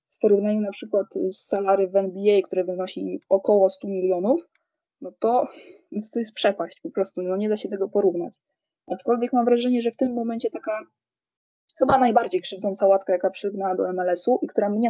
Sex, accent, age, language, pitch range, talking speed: female, native, 20-39, Polish, 195-240 Hz, 185 wpm